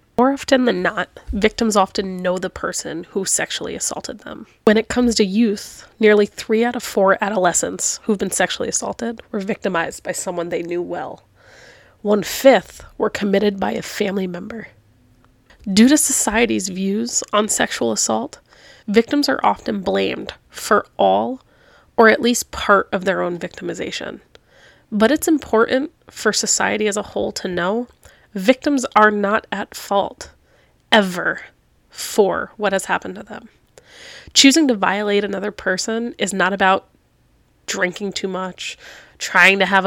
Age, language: 20-39, English